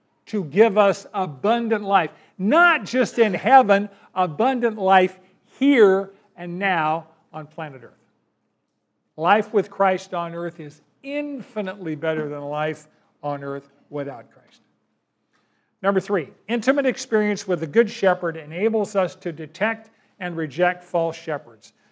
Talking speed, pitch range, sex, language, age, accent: 130 wpm, 170-225 Hz, male, English, 50-69, American